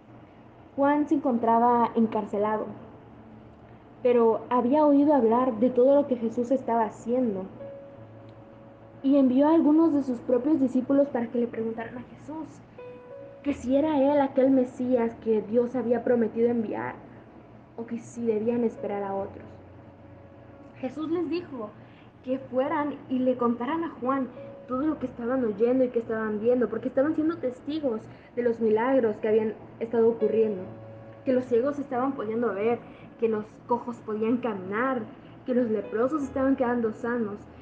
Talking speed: 150 wpm